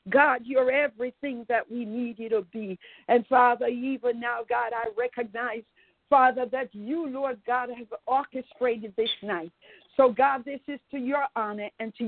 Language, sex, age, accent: English, female, 50-69, American